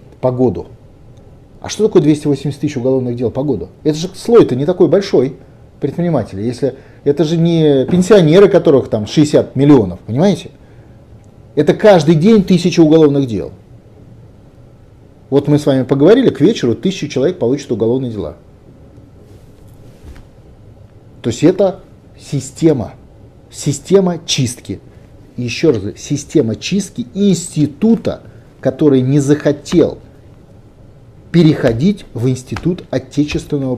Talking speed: 115 wpm